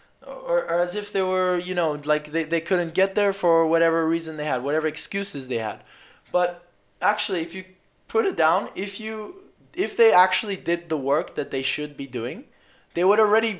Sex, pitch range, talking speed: male, 155-190 Hz, 205 wpm